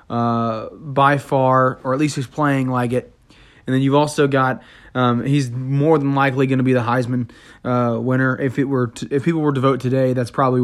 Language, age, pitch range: English, 20-39, 120-140 Hz